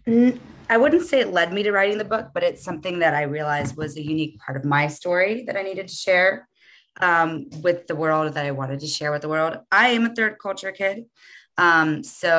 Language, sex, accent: English, female, American